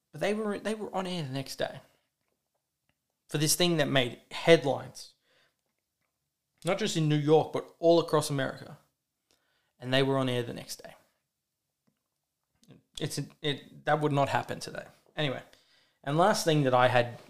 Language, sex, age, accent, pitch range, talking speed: English, male, 20-39, Australian, 125-155 Hz, 165 wpm